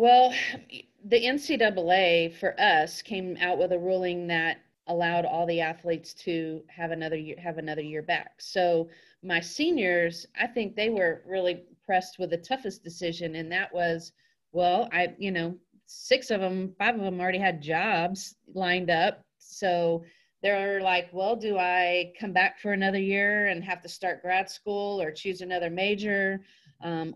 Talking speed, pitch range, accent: 170 wpm, 170-210 Hz, American